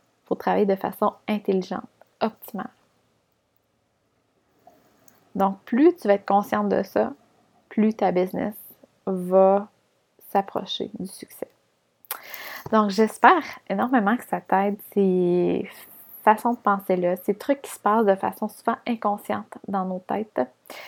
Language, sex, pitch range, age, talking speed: French, female, 190-220 Hz, 20-39, 125 wpm